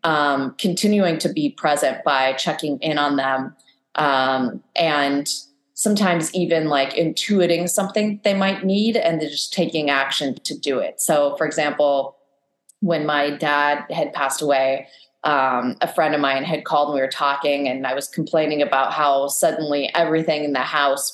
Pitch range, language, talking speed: 140-170 Hz, English, 165 wpm